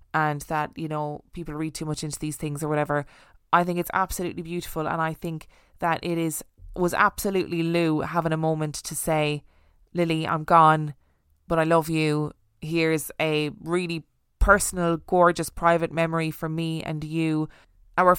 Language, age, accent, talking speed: English, 20-39, Irish, 170 wpm